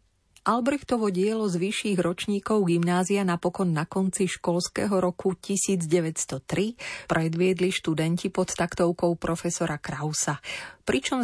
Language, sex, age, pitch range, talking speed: Slovak, female, 30-49, 160-195 Hz, 100 wpm